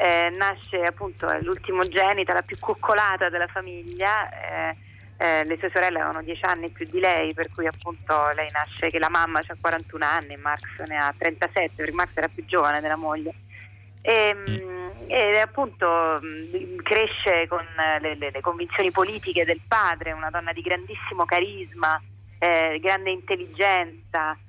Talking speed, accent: 155 wpm, native